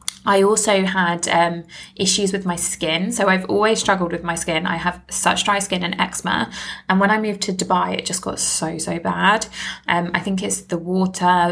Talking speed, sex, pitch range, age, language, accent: 210 wpm, female, 175-205 Hz, 20-39, English, British